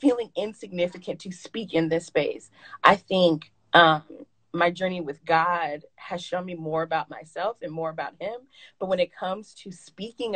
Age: 20-39